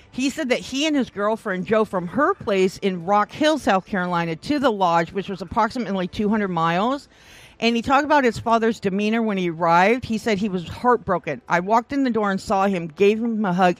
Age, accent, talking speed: 50-69, American, 220 wpm